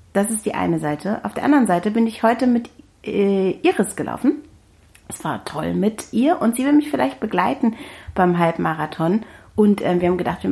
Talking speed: 195 wpm